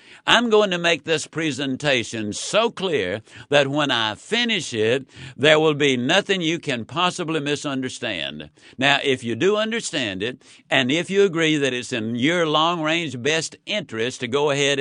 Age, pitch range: 60-79, 130-165 Hz